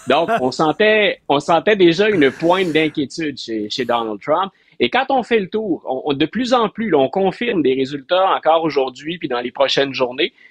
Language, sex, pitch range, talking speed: French, male, 125-175 Hz, 210 wpm